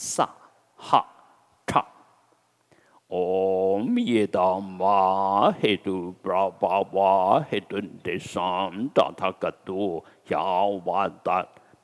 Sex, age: male, 60-79